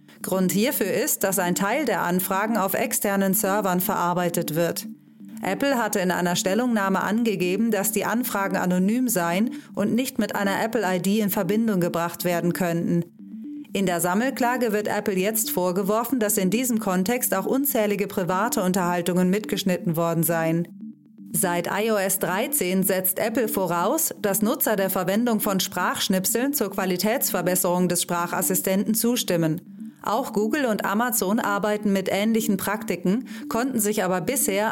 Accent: German